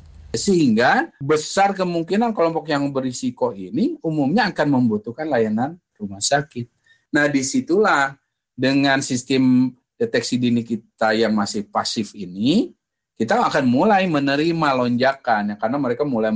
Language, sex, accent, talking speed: Indonesian, male, native, 115 wpm